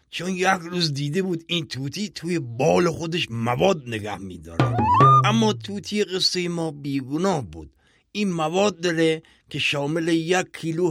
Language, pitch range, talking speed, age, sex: Persian, 135-195 Hz, 140 wpm, 50-69, male